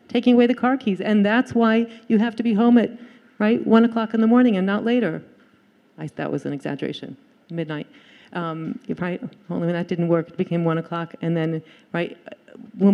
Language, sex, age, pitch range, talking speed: English, female, 40-59, 185-240 Hz, 205 wpm